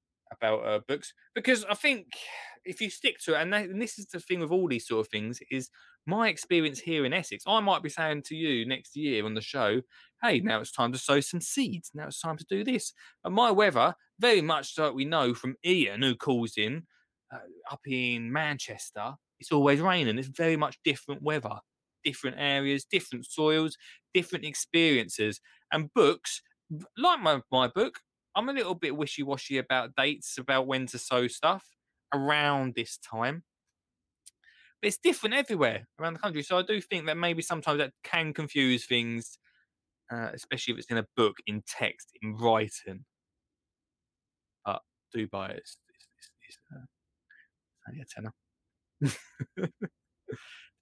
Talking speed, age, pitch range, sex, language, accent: 175 wpm, 20-39, 130-180 Hz, male, English, British